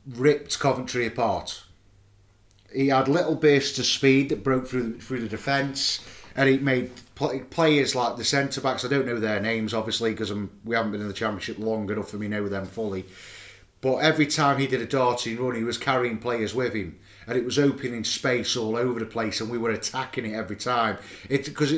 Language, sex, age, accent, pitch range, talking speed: English, male, 30-49, British, 110-135 Hz, 200 wpm